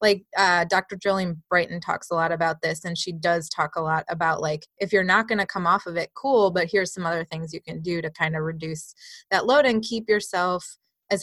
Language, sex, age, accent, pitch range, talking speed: English, female, 20-39, American, 175-210 Hz, 245 wpm